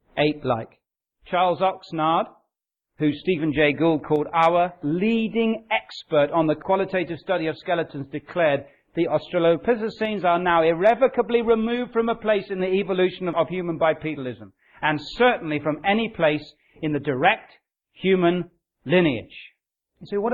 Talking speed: 135 wpm